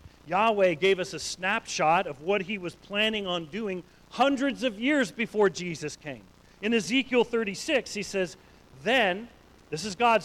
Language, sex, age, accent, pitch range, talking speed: English, male, 40-59, American, 145-215 Hz, 160 wpm